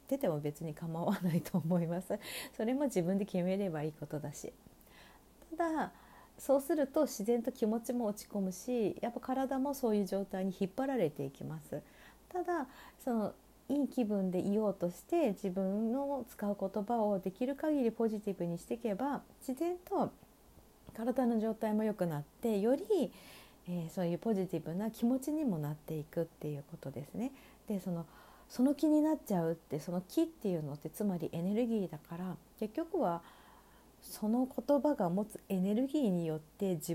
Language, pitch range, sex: Japanese, 170-260 Hz, female